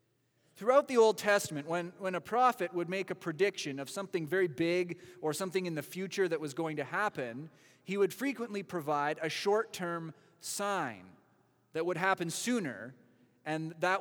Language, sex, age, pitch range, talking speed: English, male, 30-49, 150-195 Hz, 170 wpm